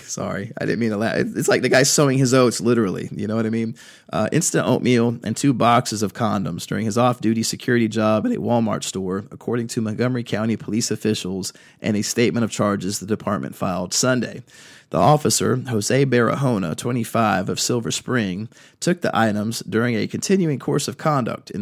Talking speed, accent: 190 wpm, American